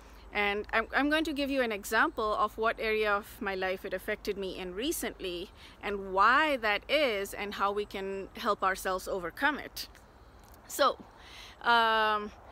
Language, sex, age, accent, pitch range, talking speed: English, female, 30-49, Indian, 205-270 Hz, 160 wpm